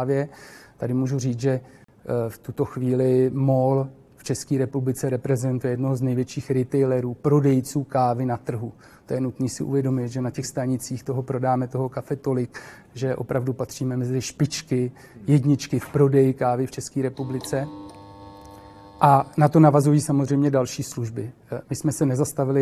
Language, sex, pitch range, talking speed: Czech, male, 120-135 Hz, 150 wpm